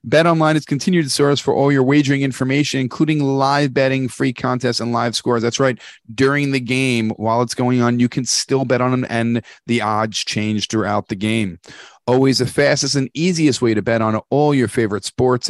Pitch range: 115-130 Hz